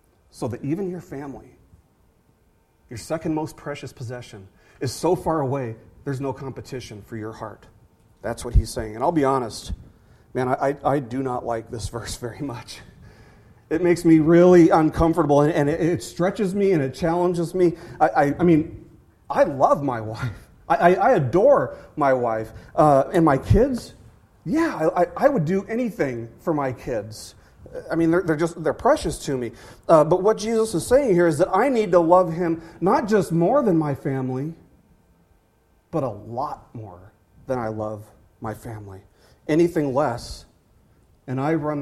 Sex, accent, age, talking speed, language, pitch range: male, American, 40-59, 170 wpm, English, 110-165 Hz